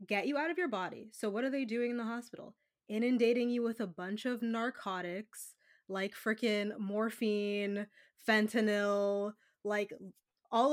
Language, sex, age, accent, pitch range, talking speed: English, female, 20-39, American, 195-245 Hz, 150 wpm